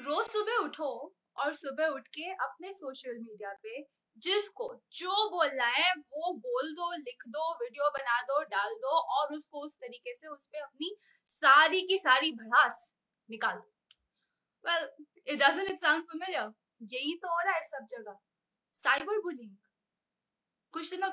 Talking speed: 150 wpm